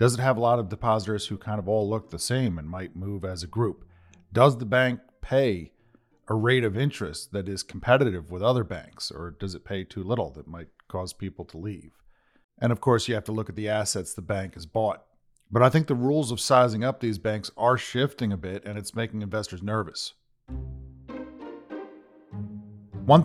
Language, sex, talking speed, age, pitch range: English, male, 205 wpm, 40-59, 90-115 Hz